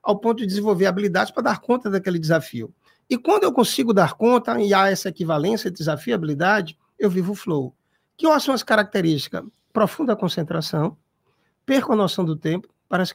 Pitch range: 170-230 Hz